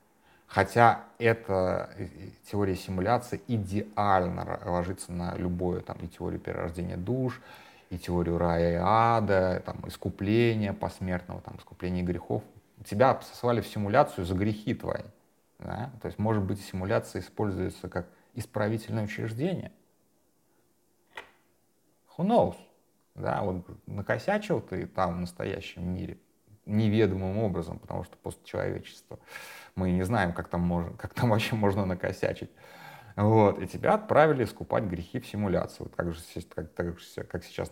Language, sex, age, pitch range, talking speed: Russian, male, 30-49, 90-110 Hz, 135 wpm